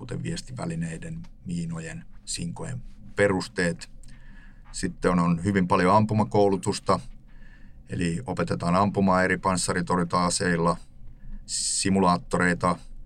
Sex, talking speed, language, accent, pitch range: male, 75 wpm, Finnish, native, 85-105 Hz